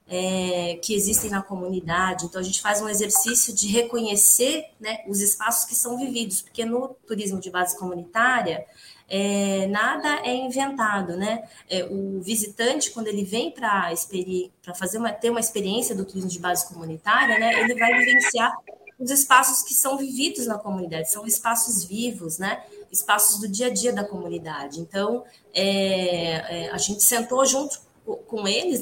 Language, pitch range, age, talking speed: Portuguese, 190-240 Hz, 20-39, 165 wpm